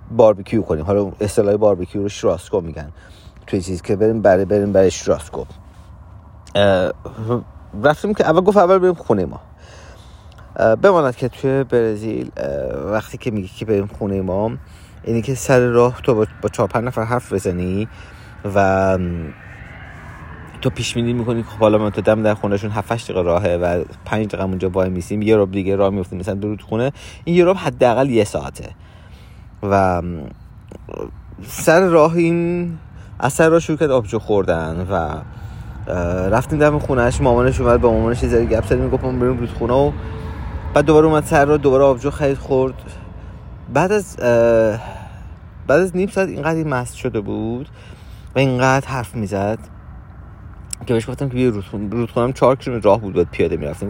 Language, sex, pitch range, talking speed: Persian, male, 95-125 Hz, 160 wpm